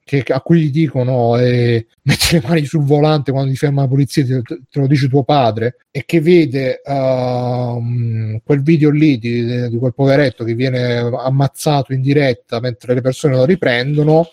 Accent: native